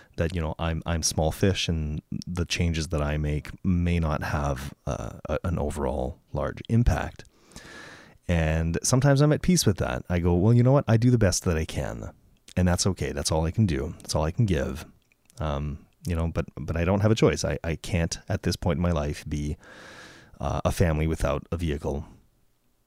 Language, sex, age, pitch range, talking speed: English, male, 30-49, 80-110 Hz, 215 wpm